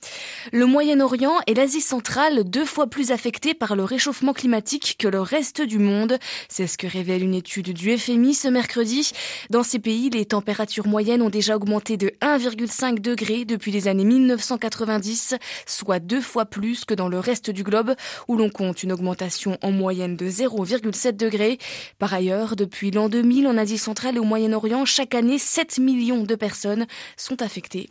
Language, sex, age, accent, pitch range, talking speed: French, female, 20-39, French, 200-250 Hz, 180 wpm